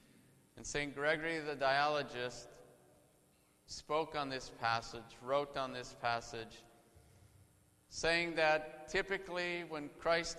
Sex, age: male, 50-69